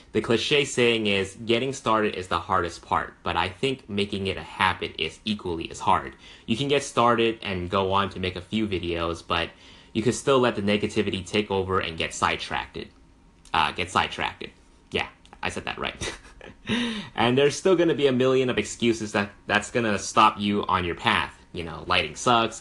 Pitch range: 90-110 Hz